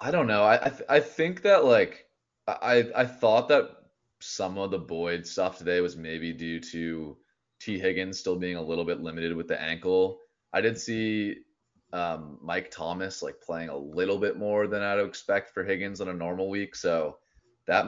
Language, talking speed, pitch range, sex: English, 195 wpm, 85-110 Hz, male